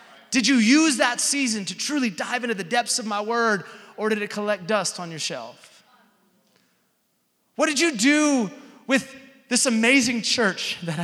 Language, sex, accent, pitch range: English, male, American, 235-280 Hz